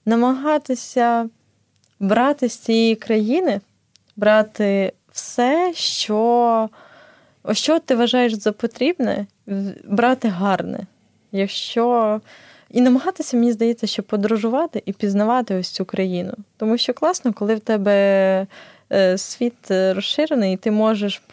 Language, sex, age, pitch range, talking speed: Ukrainian, female, 20-39, 190-235 Hz, 110 wpm